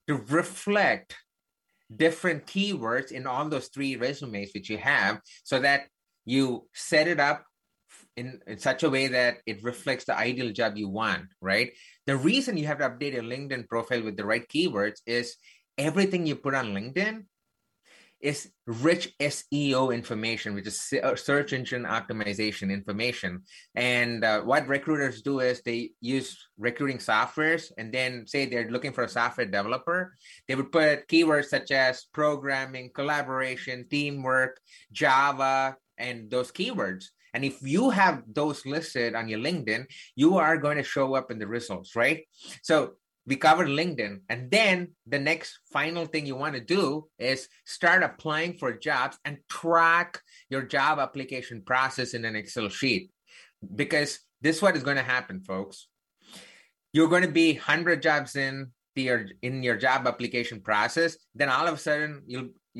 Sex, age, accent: male, 30-49, Indian